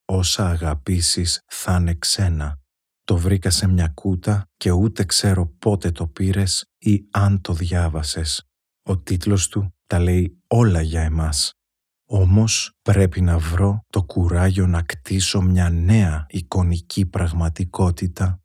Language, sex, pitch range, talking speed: Greek, male, 85-100 Hz, 130 wpm